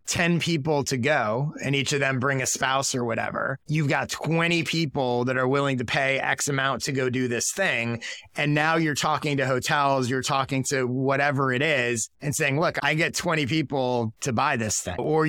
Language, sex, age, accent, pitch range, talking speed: English, male, 30-49, American, 120-145 Hz, 210 wpm